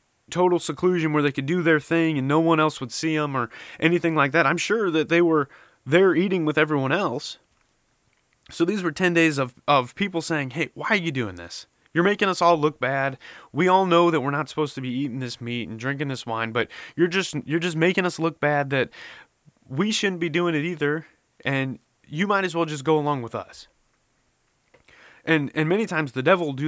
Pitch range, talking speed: 130-170 Hz, 225 wpm